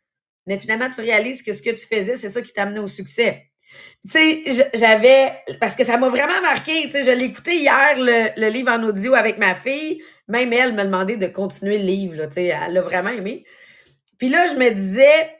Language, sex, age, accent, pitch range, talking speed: English, female, 30-49, Canadian, 200-275 Hz, 230 wpm